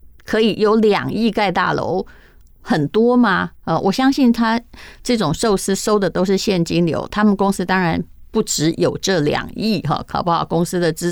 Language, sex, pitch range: Chinese, female, 170-225 Hz